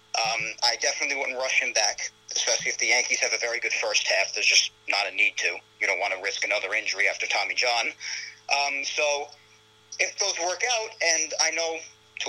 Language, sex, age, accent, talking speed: English, male, 40-59, American, 210 wpm